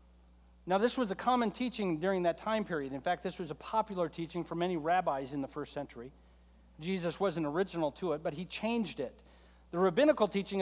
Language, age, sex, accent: English, 40-59, male, American